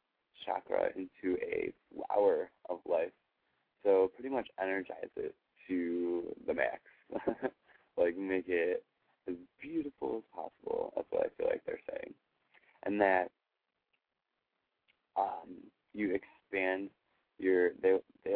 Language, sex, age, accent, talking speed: English, male, 20-39, American, 120 wpm